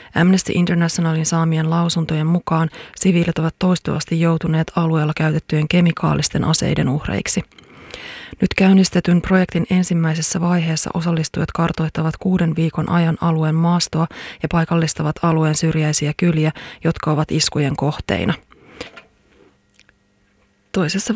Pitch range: 155-175 Hz